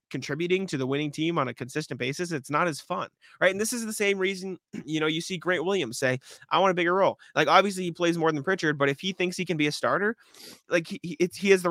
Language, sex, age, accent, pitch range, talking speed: English, male, 20-39, American, 135-165 Hz, 275 wpm